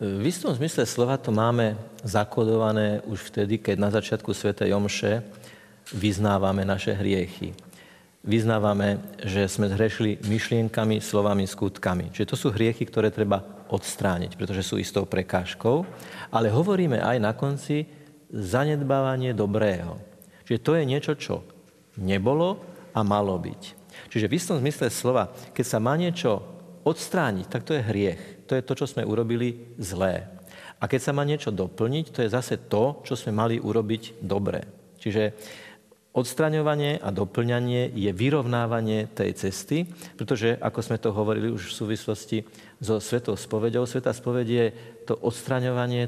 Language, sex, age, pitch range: Slovak, male, 50-69, 105-125 Hz